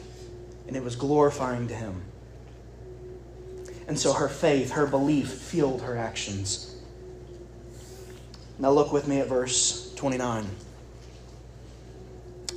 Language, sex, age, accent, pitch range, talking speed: English, male, 30-49, American, 125-210 Hz, 105 wpm